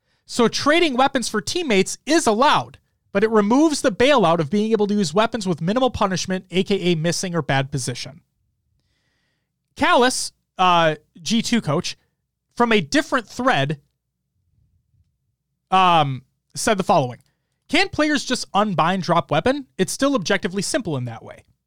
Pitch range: 145-215 Hz